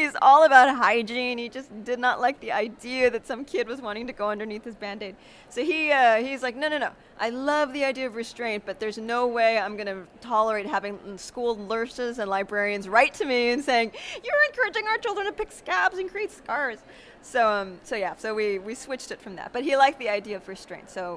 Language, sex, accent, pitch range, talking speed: English, female, American, 200-260 Hz, 225 wpm